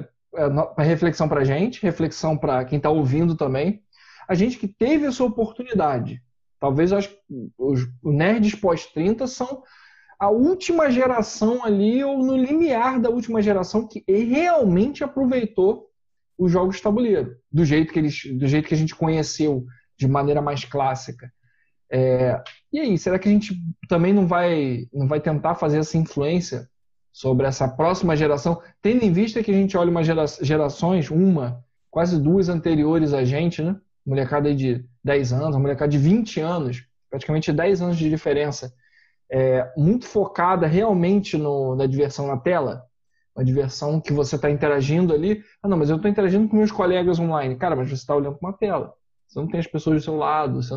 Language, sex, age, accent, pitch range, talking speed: Portuguese, male, 20-39, Brazilian, 145-200 Hz, 175 wpm